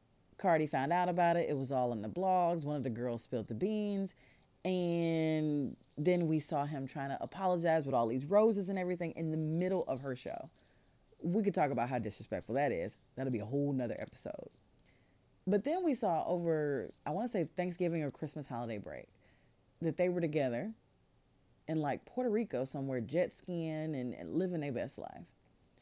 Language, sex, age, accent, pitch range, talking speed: English, female, 30-49, American, 130-185 Hz, 195 wpm